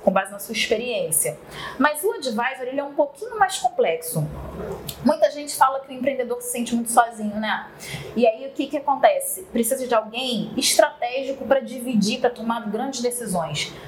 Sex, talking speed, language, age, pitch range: female, 175 wpm, Portuguese, 20-39, 220-295 Hz